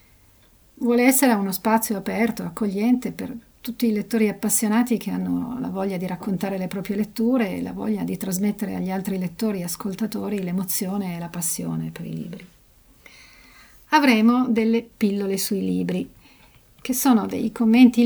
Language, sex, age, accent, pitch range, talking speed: Italian, female, 40-59, native, 180-230 Hz, 155 wpm